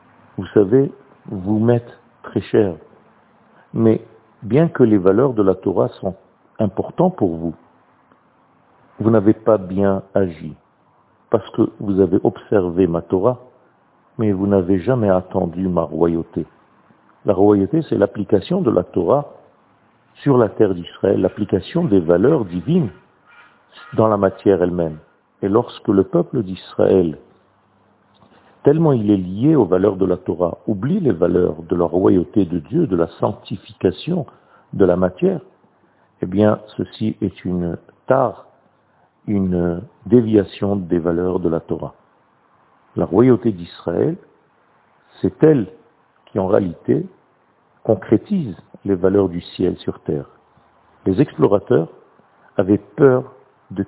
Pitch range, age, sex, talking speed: 95-120 Hz, 50-69, male, 130 wpm